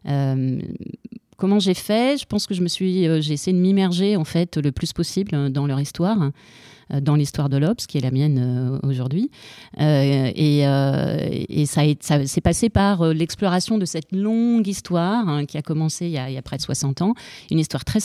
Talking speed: 220 wpm